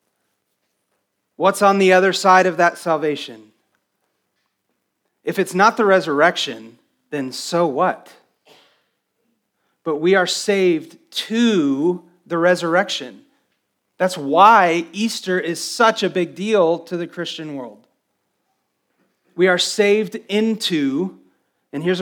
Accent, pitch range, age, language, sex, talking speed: American, 145-195 Hz, 30-49, English, male, 110 wpm